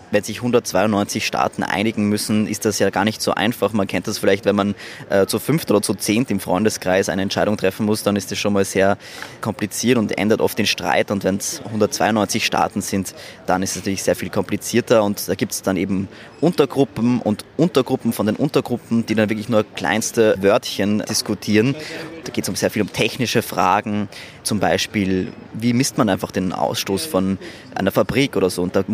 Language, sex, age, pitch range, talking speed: German, male, 20-39, 100-115 Hz, 205 wpm